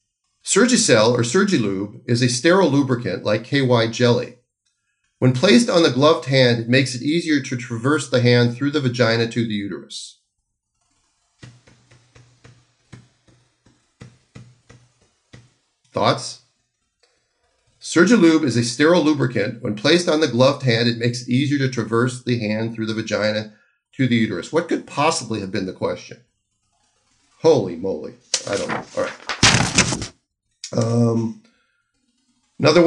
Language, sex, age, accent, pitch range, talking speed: English, male, 40-59, American, 115-140 Hz, 130 wpm